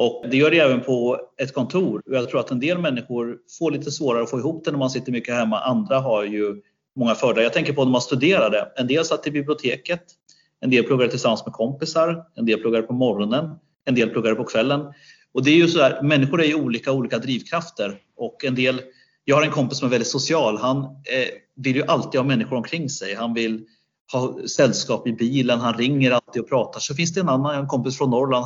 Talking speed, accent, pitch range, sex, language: 230 wpm, native, 120-150 Hz, male, Swedish